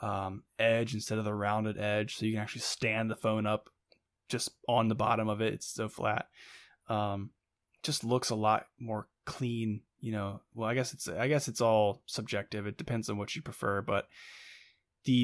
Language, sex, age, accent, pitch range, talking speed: English, male, 20-39, American, 105-125 Hz, 195 wpm